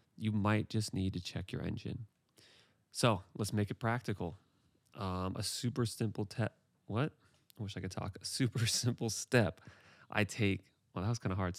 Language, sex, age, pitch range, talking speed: English, male, 30-49, 95-115 Hz, 185 wpm